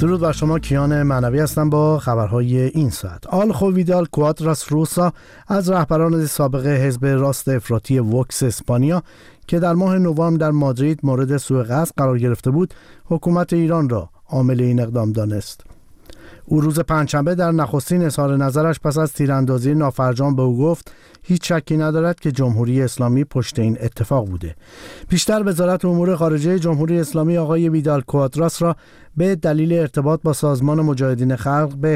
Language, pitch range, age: Persian, 130-165 Hz, 50-69